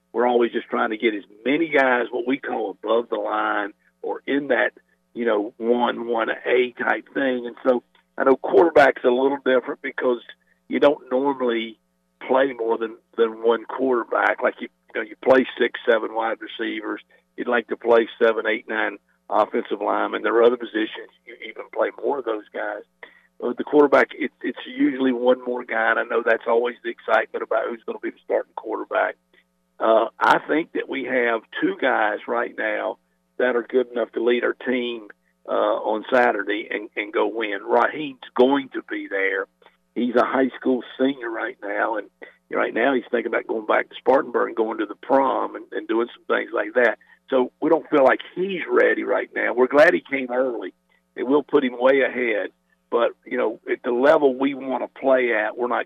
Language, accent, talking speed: English, American, 205 wpm